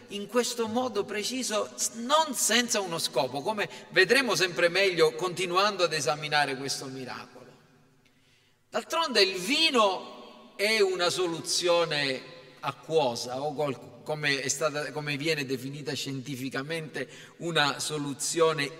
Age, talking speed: 40-59, 110 wpm